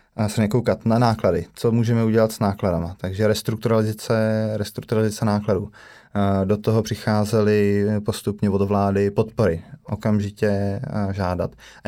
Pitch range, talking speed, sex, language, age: 105-120 Hz, 110 wpm, male, Slovak, 20-39